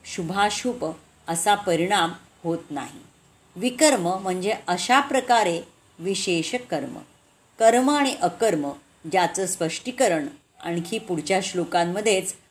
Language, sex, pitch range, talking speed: Marathi, female, 170-220 Hz, 90 wpm